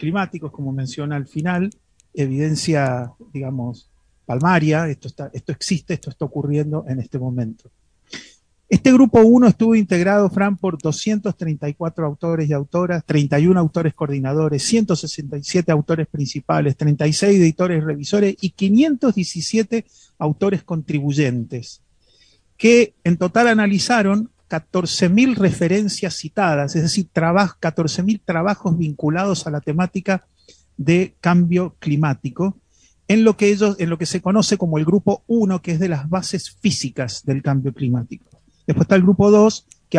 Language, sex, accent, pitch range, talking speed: Spanish, male, Argentinian, 145-195 Hz, 135 wpm